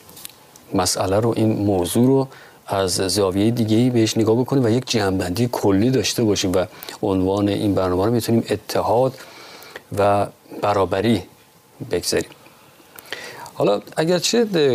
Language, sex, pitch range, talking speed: Persian, male, 100-130 Hz, 120 wpm